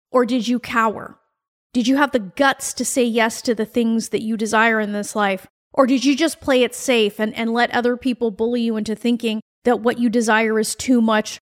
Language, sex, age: English, female, 30-49